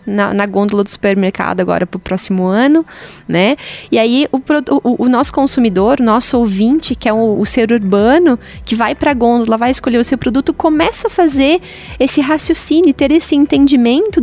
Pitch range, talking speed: 210-270 Hz, 185 wpm